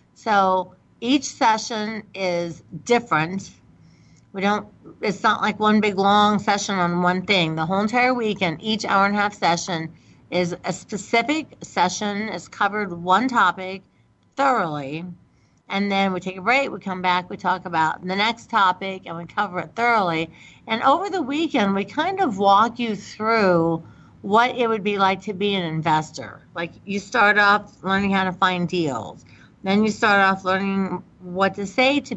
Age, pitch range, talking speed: 50-69, 180-235 Hz, 175 wpm